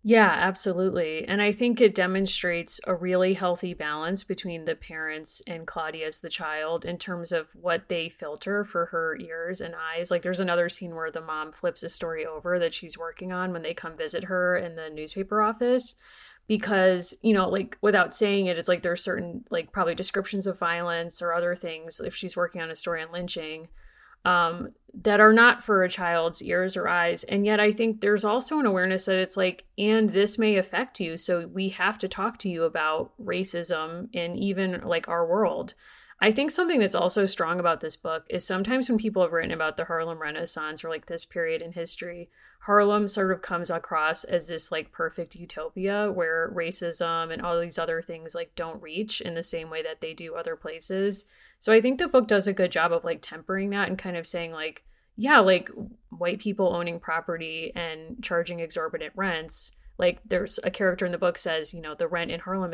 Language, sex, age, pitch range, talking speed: English, female, 30-49, 165-205 Hz, 210 wpm